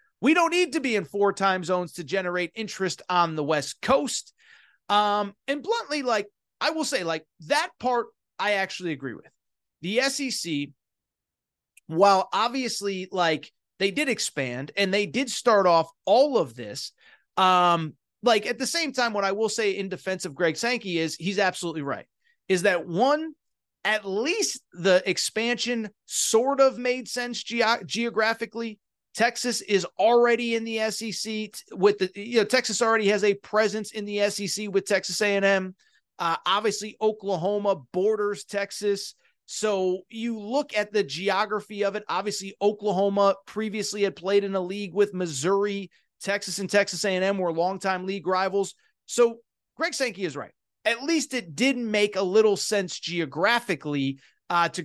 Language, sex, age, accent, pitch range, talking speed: English, male, 30-49, American, 185-230 Hz, 165 wpm